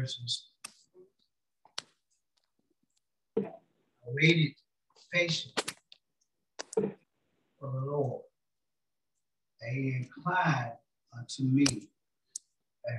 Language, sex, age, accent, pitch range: English, male, 60-79, American, 125-155 Hz